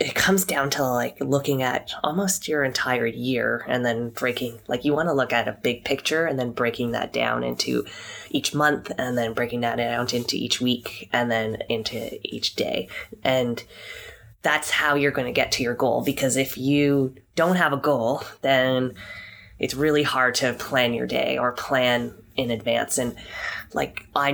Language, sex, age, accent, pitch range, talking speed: English, female, 20-39, American, 120-140 Hz, 180 wpm